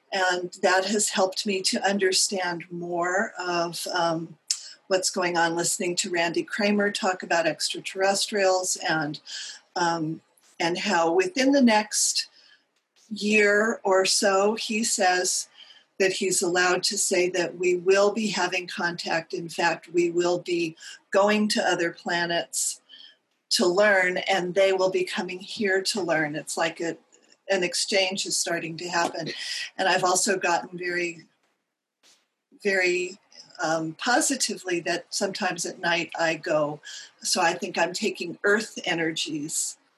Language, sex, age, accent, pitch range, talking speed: English, female, 40-59, American, 170-205 Hz, 140 wpm